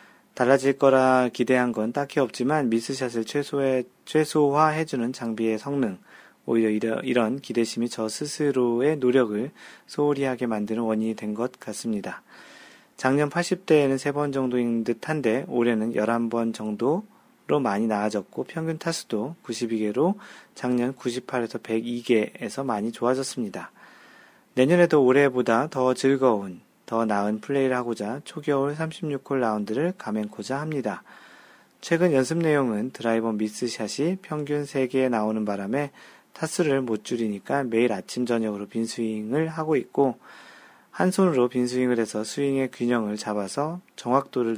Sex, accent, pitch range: male, native, 115-140 Hz